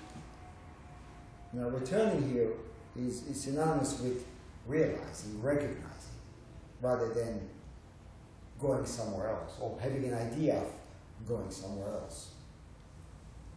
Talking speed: 95 wpm